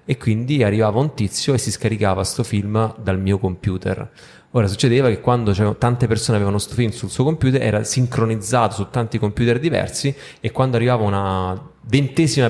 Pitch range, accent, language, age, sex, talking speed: 95-120 Hz, native, Italian, 20-39, male, 180 wpm